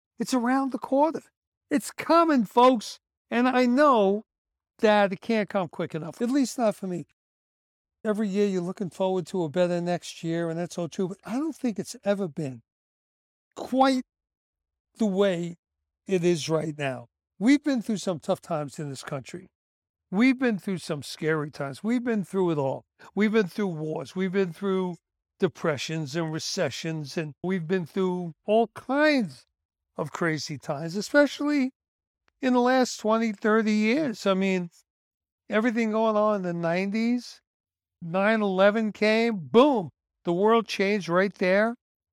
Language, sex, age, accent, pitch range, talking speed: English, male, 60-79, American, 160-220 Hz, 160 wpm